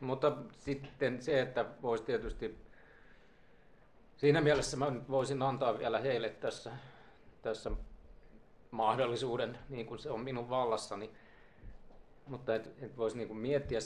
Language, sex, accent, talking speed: Finnish, male, native, 110 wpm